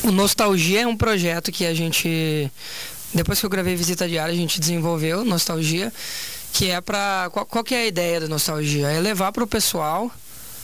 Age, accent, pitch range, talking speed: 20-39, Brazilian, 165-210 Hz, 190 wpm